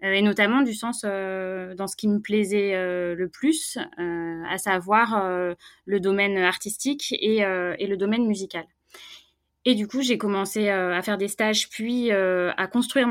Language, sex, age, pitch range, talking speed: French, female, 20-39, 180-220 Hz, 185 wpm